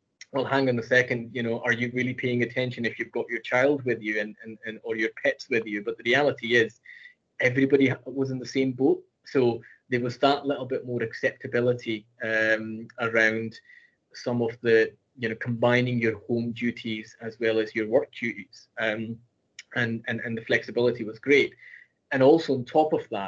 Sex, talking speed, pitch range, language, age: male, 195 wpm, 110-125 Hz, English, 20-39